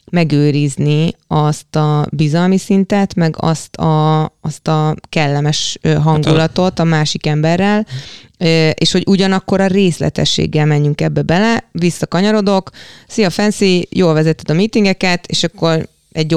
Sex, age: female, 20-39